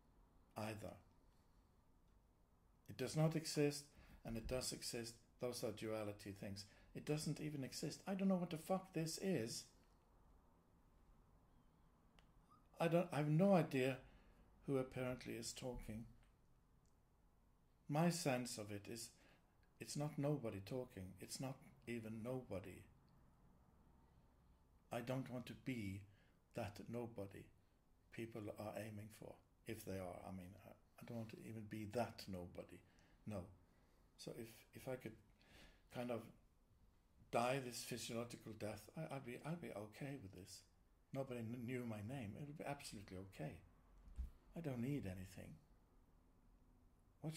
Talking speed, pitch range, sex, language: 130 wpm, 90-130 Hz, male, English